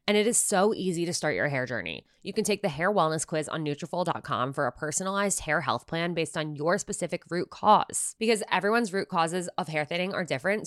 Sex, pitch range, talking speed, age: female, 145-195 Hz, 225 wpm, 20-39